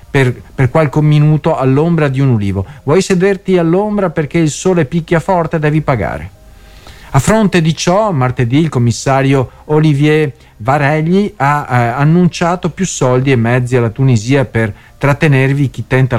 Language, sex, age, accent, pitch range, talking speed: Italian, male, 50-69, native, 115-150 Hz, 150 wpm